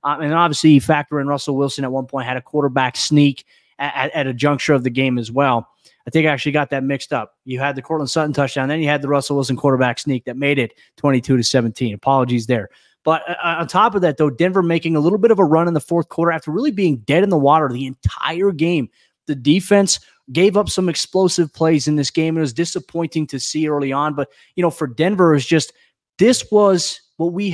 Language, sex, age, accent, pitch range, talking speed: English, male, 20-39, American, 140-170 Hz, 245 wpm